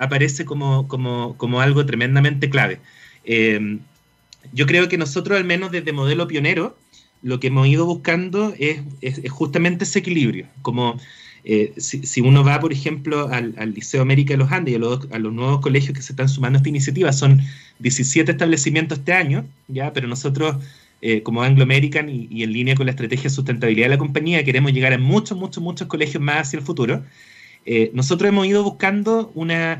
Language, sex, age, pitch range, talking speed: Spanish, male, 30-49, 130-170 Hz, 195 wpm